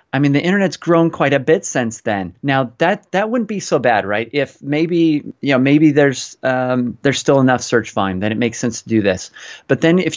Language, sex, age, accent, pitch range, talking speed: English, male, 30-49, American, 120-145 Hz, 235 wpm